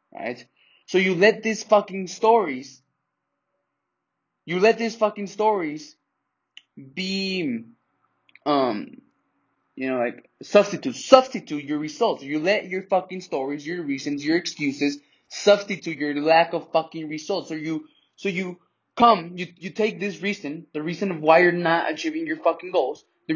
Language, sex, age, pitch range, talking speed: English, male, 20-39, 150-200 Hz, 150 wpm